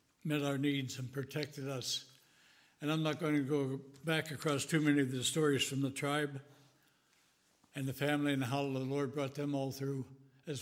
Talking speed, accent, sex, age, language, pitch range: 190 wpm, American, male, 60-79, English, 135-155 Hz